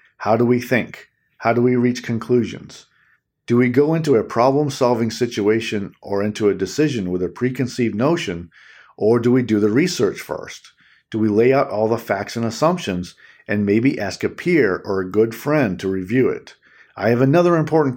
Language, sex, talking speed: English, male, 185 wpm